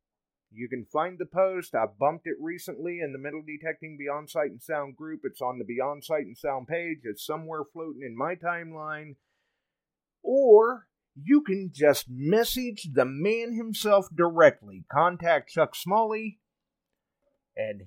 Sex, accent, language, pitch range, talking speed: male, American, English, 120-175 Hz, 150 wpm